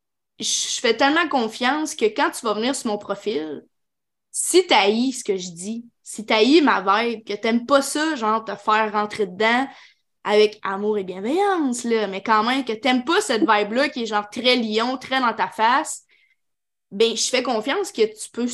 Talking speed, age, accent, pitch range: 205 wpm, 20-39, Canadian, 220-295 Hz